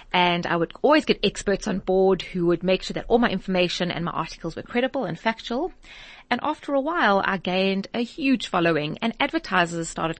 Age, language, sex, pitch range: 30-49, English, female, 170-225 Hz